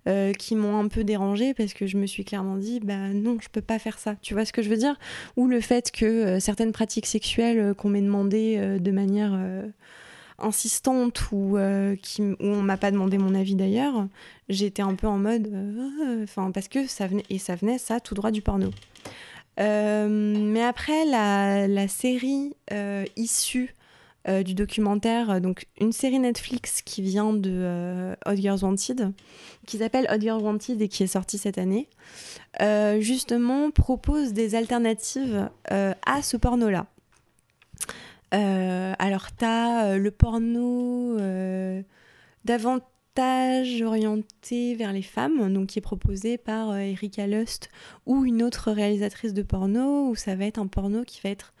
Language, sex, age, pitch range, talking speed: French, female, 20-39, 195-235 Hz, 175 wpm